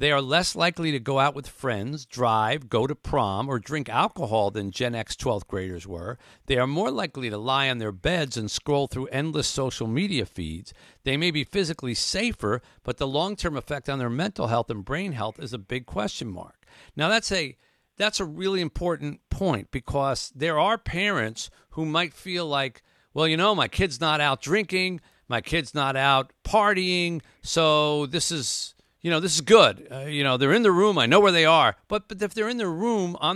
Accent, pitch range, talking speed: American, 125-175 Hz, 210 wpm